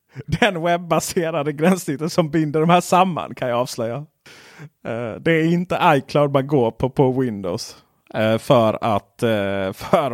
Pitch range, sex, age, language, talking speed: 110-140 Hz, male, 30-49, Swedish, 155 wpm